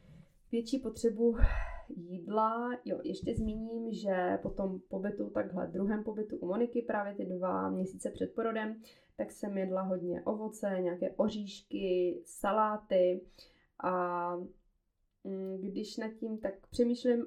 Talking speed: 120 wpm